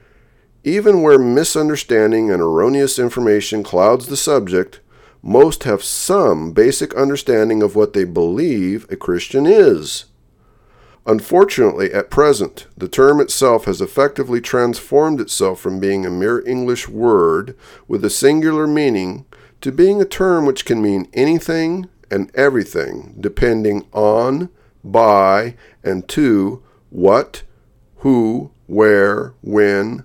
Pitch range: 105-175 Hz